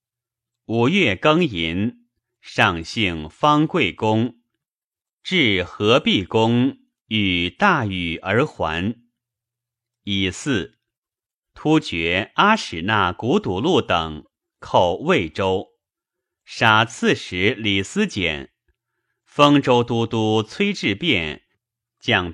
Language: Chinese